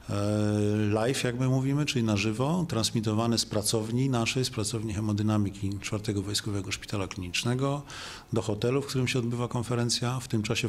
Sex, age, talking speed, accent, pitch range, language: male, 40-59, 155 wpm, native, 105-125 Hz, Polish